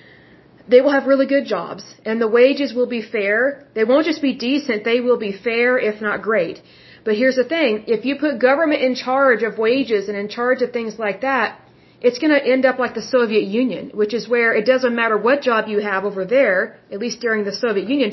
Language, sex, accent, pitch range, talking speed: Russian, female, American, 210-255 Hz, 230 wpm